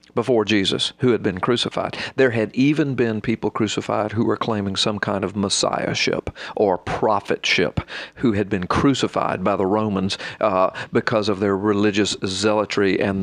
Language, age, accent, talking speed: English, 40-59, American, 160 wpm